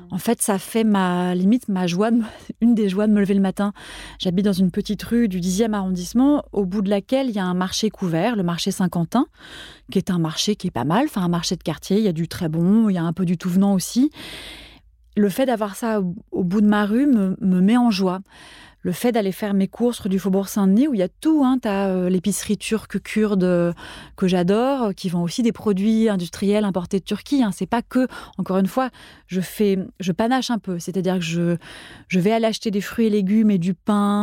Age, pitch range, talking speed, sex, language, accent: 30-49, 185-220 Hz, 245 wpm, female, French, French